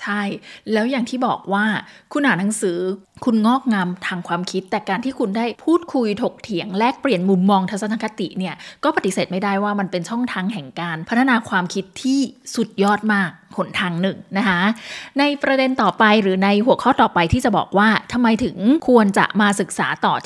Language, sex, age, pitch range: Thai, female, 20-39, 195-255 Hz